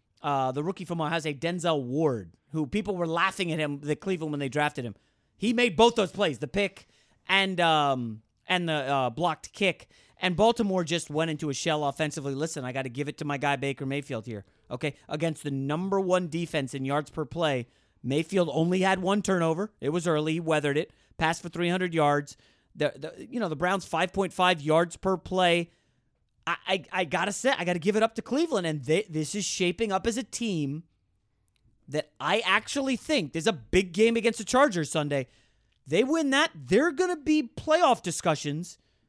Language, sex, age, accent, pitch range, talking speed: English, male, 30-49, American, 145-195 Hz, 195 wpm